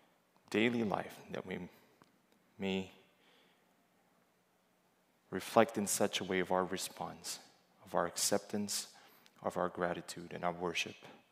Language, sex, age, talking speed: English, male, 20-39, 115 wpm